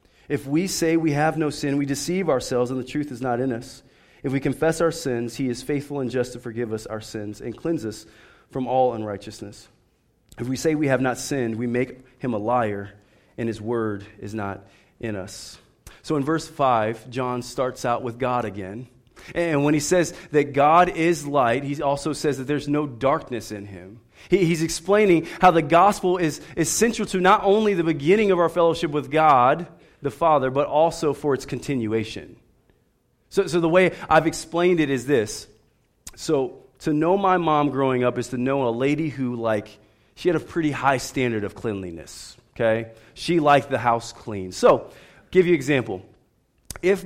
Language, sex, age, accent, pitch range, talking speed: English, male, 30-49, American, 120-155 Hz, 195 wpm